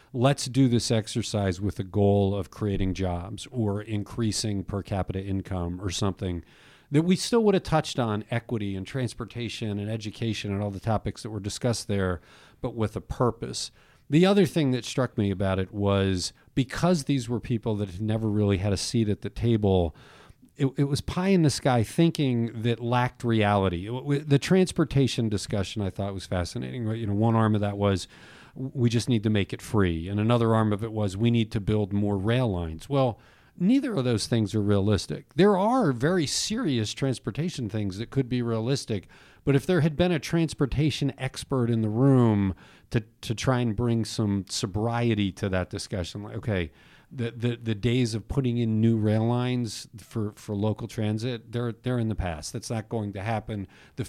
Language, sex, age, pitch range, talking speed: English, male, 40-59, 100-125 Hz, 195 wpm